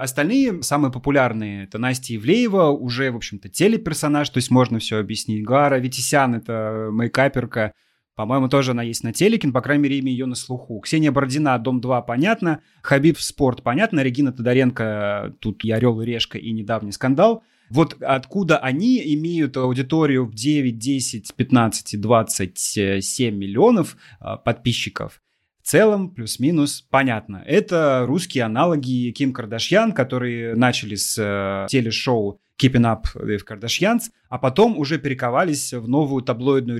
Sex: male